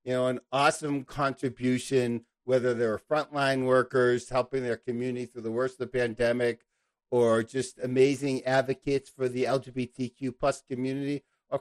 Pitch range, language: 125-150 Hz, English